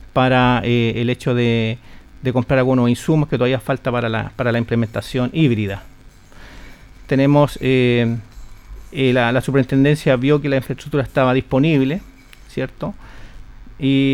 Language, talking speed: Spanish, 135 wpm